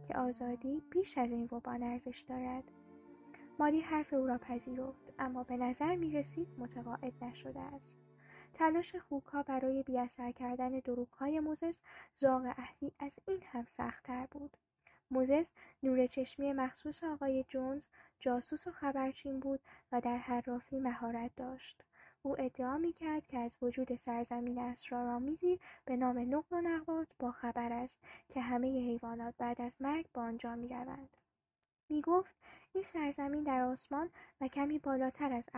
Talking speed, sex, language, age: 145 wpm, female, Persian, 10-29